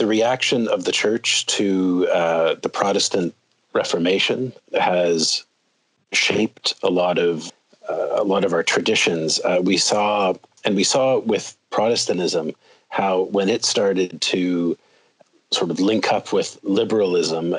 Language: English